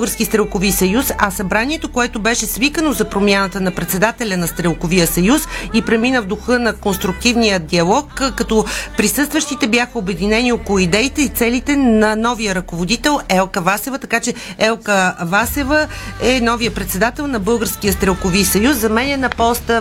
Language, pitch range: Bulgarian, 190-235 Hz